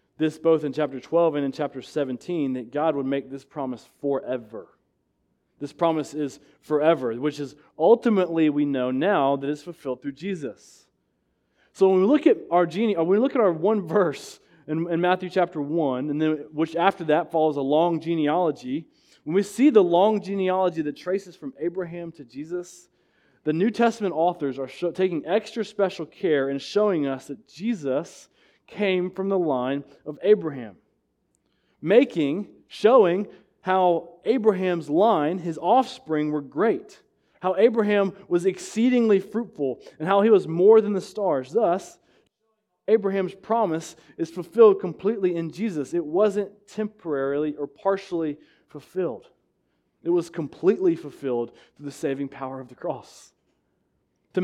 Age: 20-39